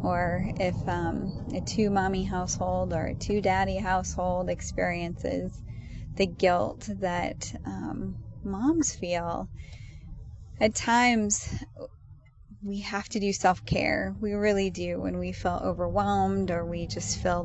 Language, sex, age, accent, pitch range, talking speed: English, female, 20-39, American, 180-215 Hz, 120 wpm